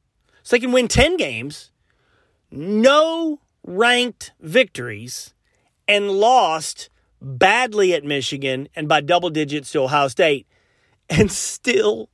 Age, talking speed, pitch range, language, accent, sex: 30-49, 115 wpm, 155-230 Hz, English, American, male